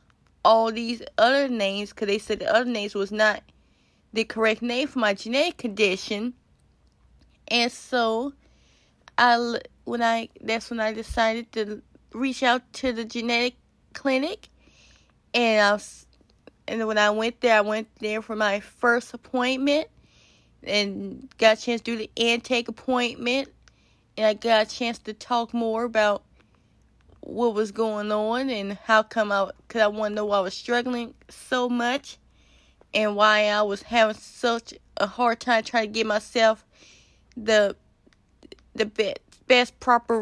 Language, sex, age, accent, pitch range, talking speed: English, female, 20-39, American, 215-240 Hz, 160 wpm